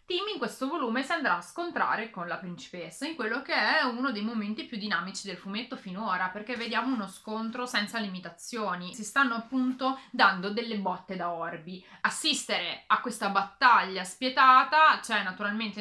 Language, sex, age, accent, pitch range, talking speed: Italian, female, 30-49, native, 185-245 Hz, 170 wpm